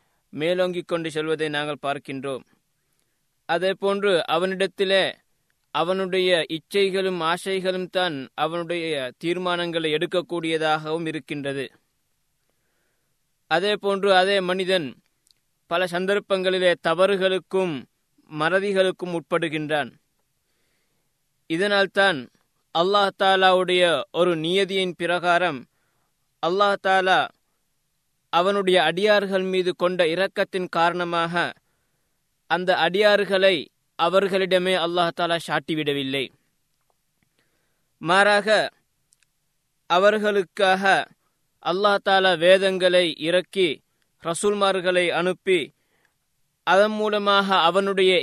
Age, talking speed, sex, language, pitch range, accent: 20-39, 65 wpm, male, Tamil, 165-190 Hz, native